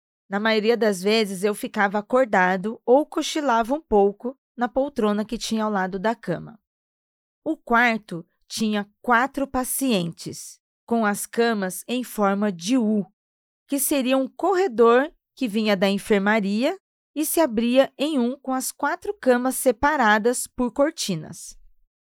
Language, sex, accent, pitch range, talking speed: Portuguese, female, Brazilian, 205-255 Hz, 140 wpm